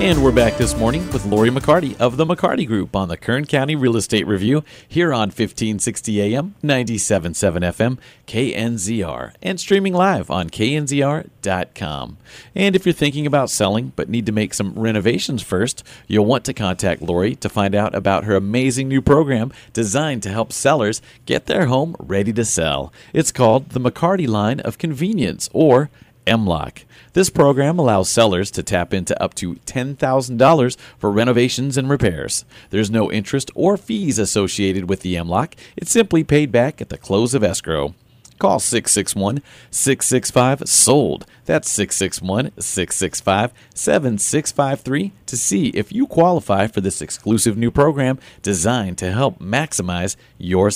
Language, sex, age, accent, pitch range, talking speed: English, male, 40-59, American, 100-140 Hz, 155 wpm